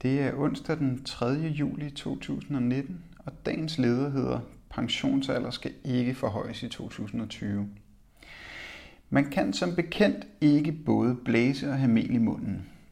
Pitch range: 115-140 Hz